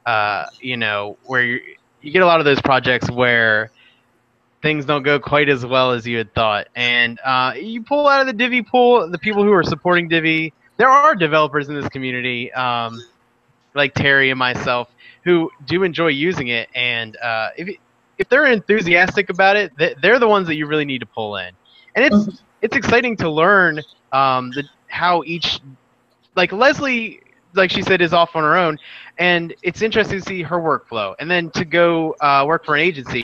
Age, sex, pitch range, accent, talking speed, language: 20-39, male, 130-190 Hz, American, 195 wpm, English